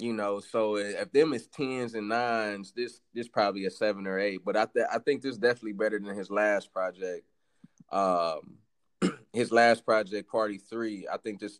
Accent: American